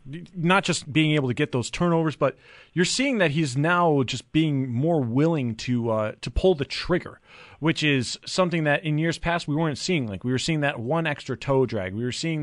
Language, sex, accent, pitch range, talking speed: English, male, American, 130-165 Hz, 220 wpm